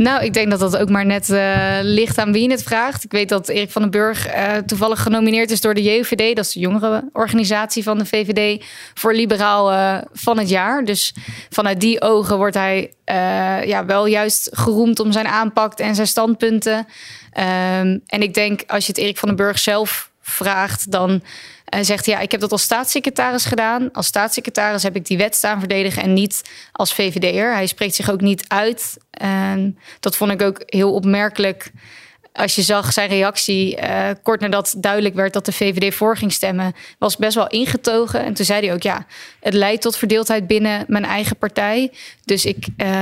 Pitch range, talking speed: 195-220 Hz, 205 wpm